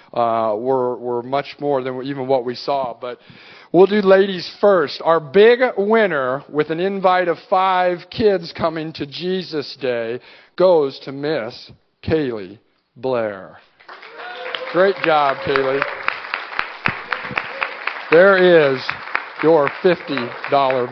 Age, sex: 50-69, male